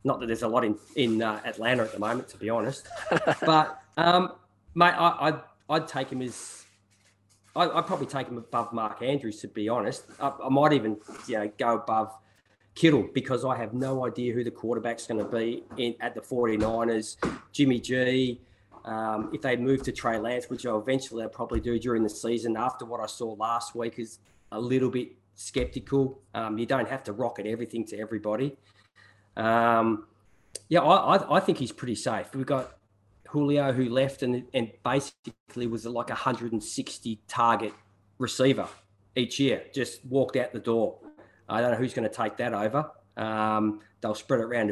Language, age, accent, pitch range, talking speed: Spanish, 20-39, Australian, 110-130 Hz, 185 wpm